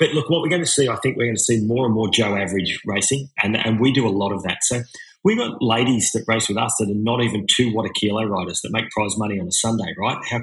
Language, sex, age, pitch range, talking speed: English, male, 30-49, 105-125 Hz, 295 wpm